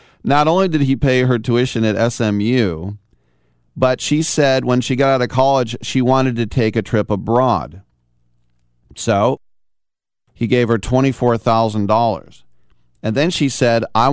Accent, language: American, English